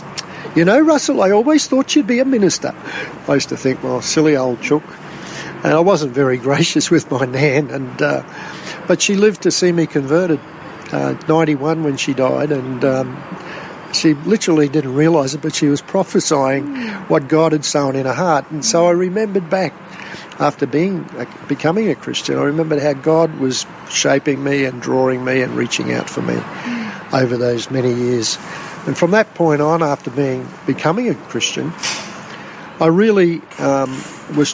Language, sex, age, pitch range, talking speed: English, male, 60-79, 135-165 Hz, 175 wpm